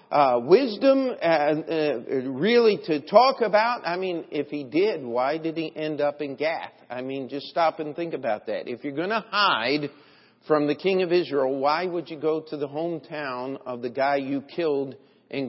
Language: English